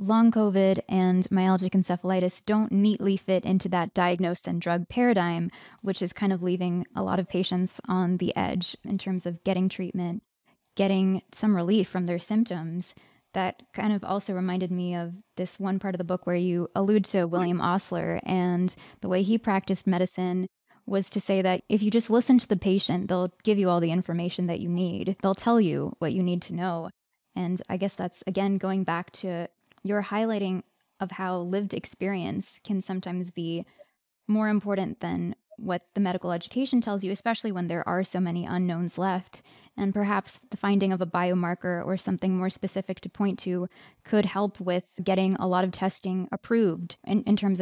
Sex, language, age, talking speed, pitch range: female, English, 20-39, 190 wpm, 180-205 Hz